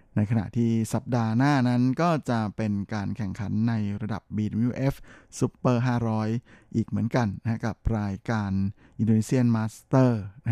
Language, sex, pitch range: Thai, male, 105-125 Hz